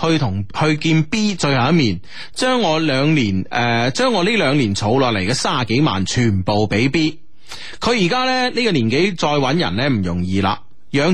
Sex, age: male, 30-49